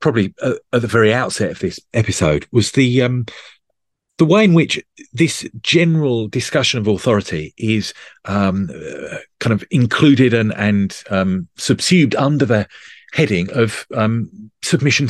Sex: male